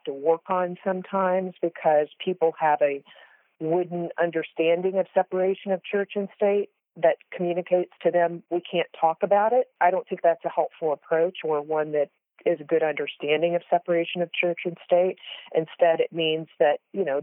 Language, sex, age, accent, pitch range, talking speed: English, female, 40-59, American, 150-185 Hz, 180 wpm